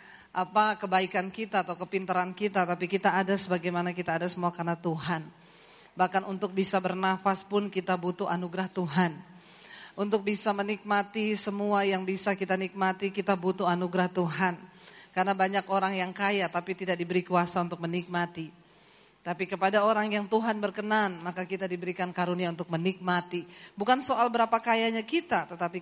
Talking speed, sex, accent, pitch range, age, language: 150 wpm, female, native, 185-250 Hz, 40-59, Indonesian